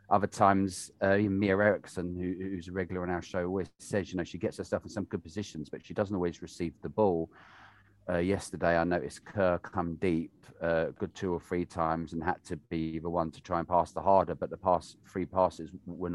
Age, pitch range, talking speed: 30-49, 85-100 Hz, 235 wpm